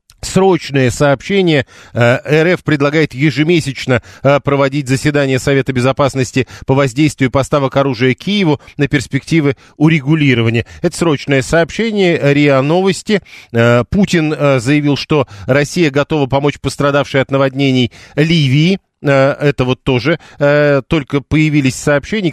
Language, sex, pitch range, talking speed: Russian, male, 130-160 Hz, 100 wpm